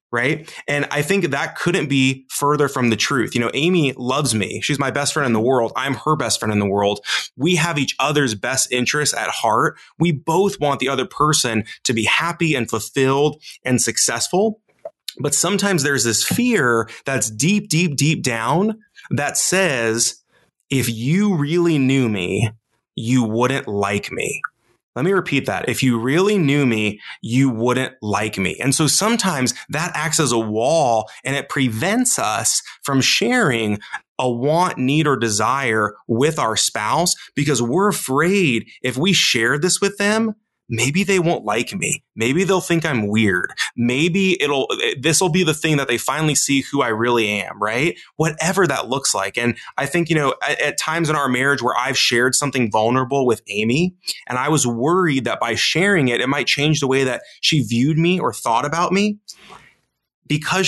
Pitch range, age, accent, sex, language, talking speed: 120-170 Hz, 20-39, American, male, English, 185 wpm